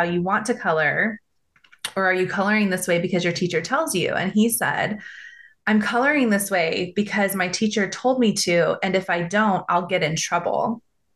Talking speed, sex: 195 wpm, female